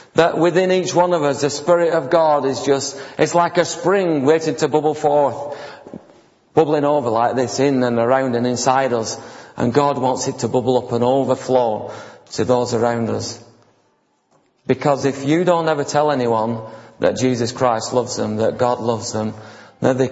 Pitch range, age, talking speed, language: 115-145 Hz, 40-59, 180 wpm, English